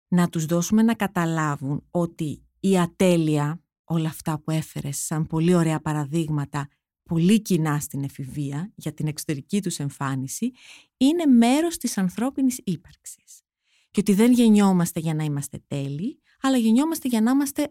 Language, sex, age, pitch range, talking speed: Greek, female, 30-49, 160-230 Hz, 145 wpm